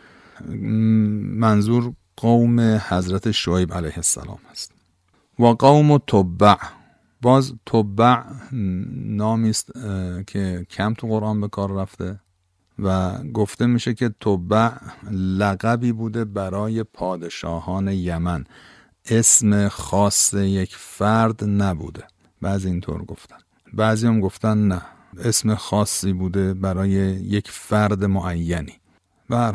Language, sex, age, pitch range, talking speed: Persian, male, 50-69, 95-115 Hz, 100 wpm